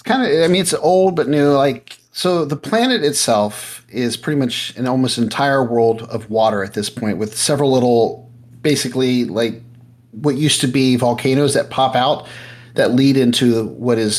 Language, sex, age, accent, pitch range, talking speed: English, male, 40-59, American, 110-130 Hz, 180 wpm